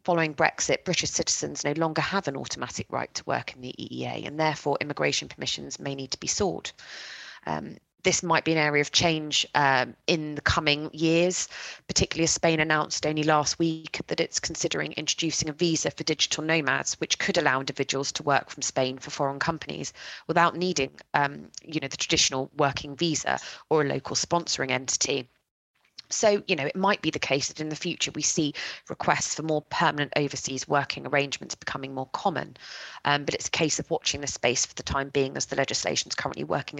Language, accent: English, British